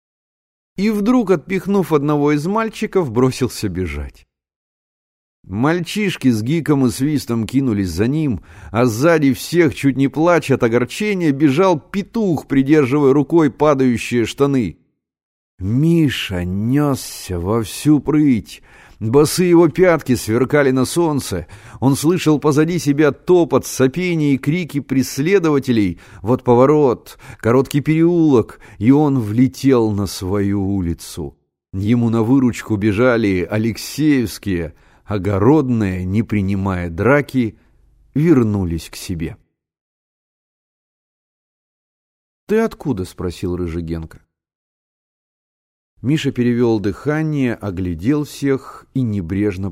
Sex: male